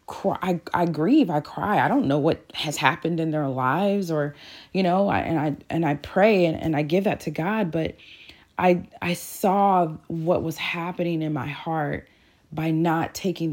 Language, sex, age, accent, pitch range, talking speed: English, female, 30-49, American, 160-195 Hz, 190 wpm